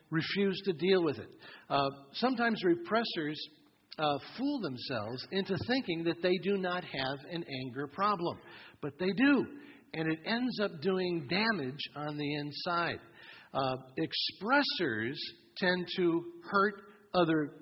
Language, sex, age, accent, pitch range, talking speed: English, male, 50-69, American, 150-190 Hz, 135 wpm